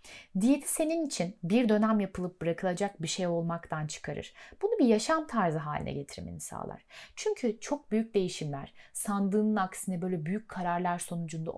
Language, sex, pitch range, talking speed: Turkish, female, 165-230 Hz, 145 wpm